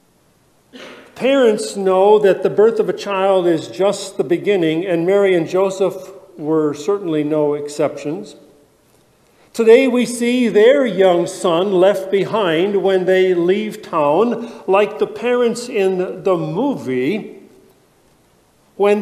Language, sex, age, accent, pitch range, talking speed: English, male, 50-69, American, 165-220 Hz, 125 wpm